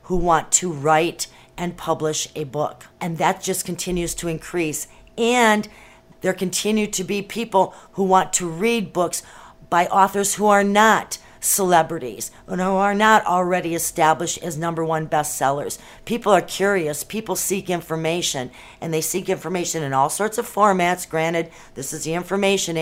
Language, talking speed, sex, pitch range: English, 160 wpm, female, 160-190 Hz